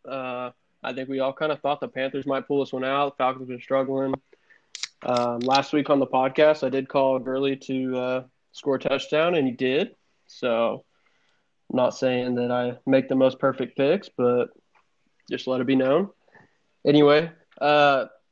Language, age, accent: English, 20-39, American